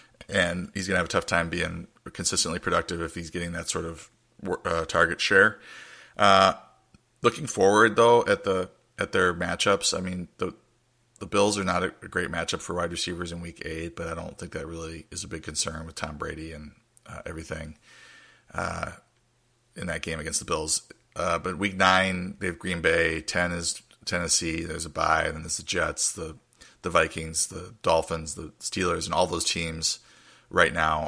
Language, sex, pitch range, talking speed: English, male, 80-90 Hz, 195 wpm